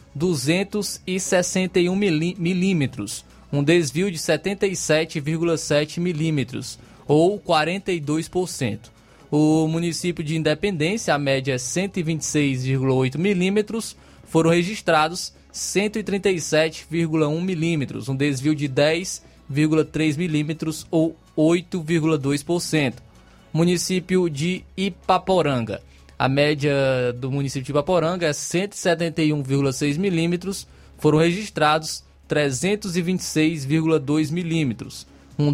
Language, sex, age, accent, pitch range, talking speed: Portuguese, male, 20-39, Brazilian, 145-175 Hz, 80 wpm